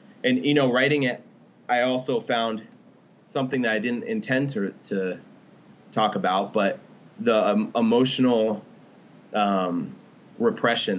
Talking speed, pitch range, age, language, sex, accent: 125 wpm, 100-125 Hz, 30-49, English, male, American